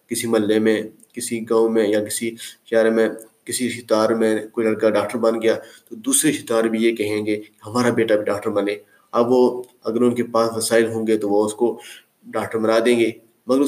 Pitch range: 110-125 Hz